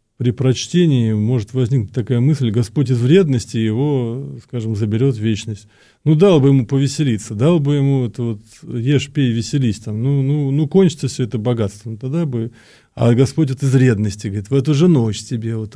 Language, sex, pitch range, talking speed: Russian, male, 115-140 Hz, 185 wpm